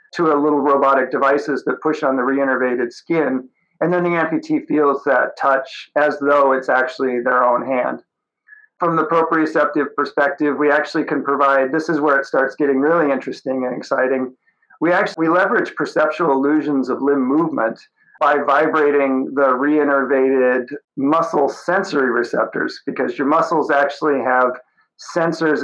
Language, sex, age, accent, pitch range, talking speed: English, male, 50-69, American, 135-165 Hz, 150 wpm